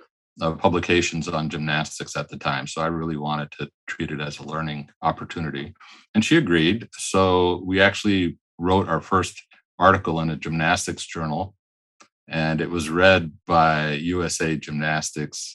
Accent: American